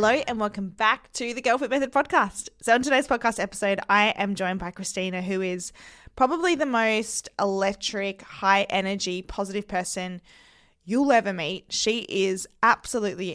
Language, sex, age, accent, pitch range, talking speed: English, female, 20-39, Australian, 180-225 Hz, 155 wpm